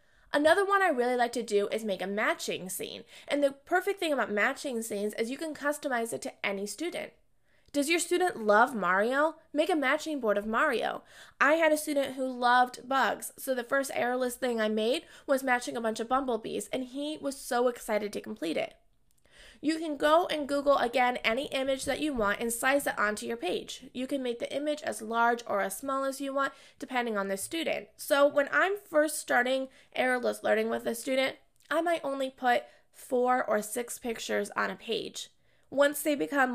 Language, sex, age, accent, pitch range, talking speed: English, female, 20-39, American, 215-280 Hz, 205 wpm